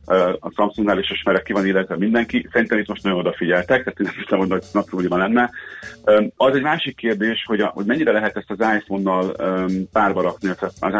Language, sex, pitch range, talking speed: Hungarian, male, 90-110 Hz, 185 wpm